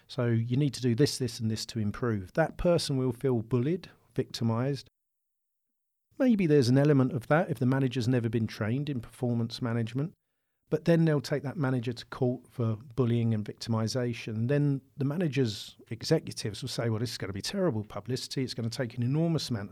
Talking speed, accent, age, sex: 200 wpm, British, 40-59, male